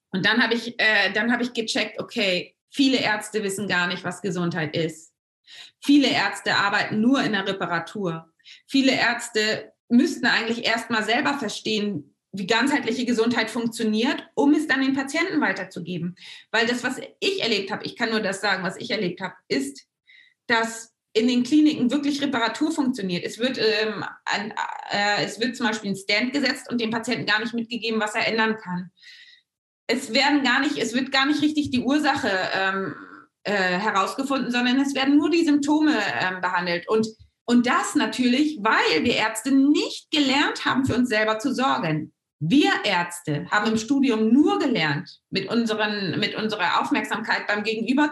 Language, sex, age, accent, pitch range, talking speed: German, female, 30-49, German, 205-275 Hz, 165 wpm